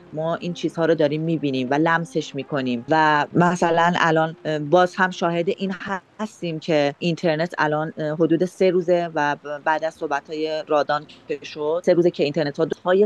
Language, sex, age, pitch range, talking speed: English, female, 30-49, 150-175 Hz, 165 wpm